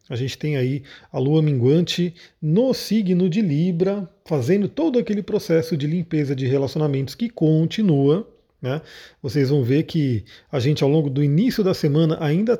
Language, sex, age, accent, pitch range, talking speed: Portuguese, male, 40-59, Brazilian, 145-180 Hz, 165 wpm